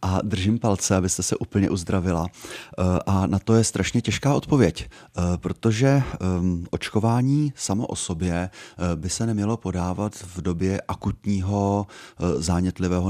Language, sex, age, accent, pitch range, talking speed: Czech, male, 30-49, native, 90-105 Hz, 125 wpm